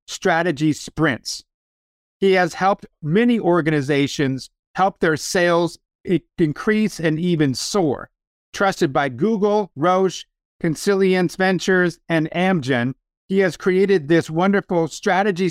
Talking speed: 110 wpm